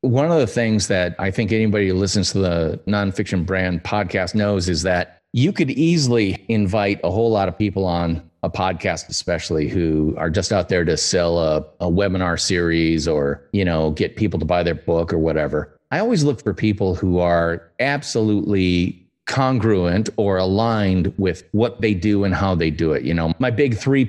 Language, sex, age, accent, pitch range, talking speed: English, male, 40-59, American, 85-110 Hz, 195 wpm